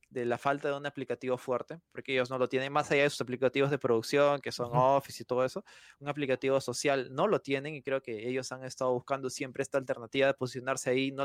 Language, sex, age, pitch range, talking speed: Spanish, male, 20-39, 130-160 Hz, 240 wpm